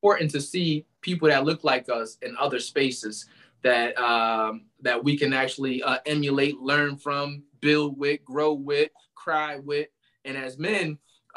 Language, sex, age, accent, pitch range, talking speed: English, male, 20-39, American, 115-140 Hz, 160 wpm